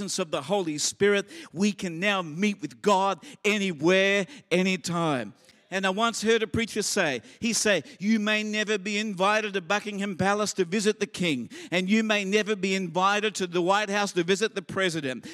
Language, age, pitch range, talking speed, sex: English, 50-69, 180-220 Hz, 185 wpm, male